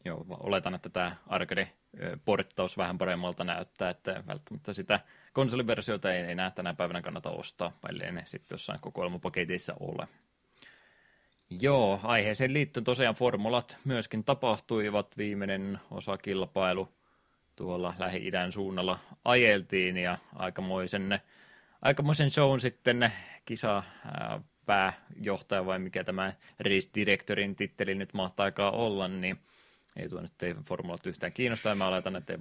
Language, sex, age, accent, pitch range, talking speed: Finnish, male, 20-39, native, 95-120 Hz, 120 wpm